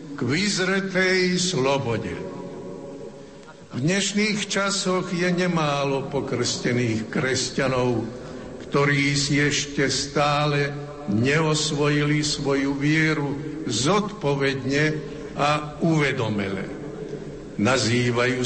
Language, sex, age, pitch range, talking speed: Slovak, male, 70-89, 135-180 Hz, 70 wpm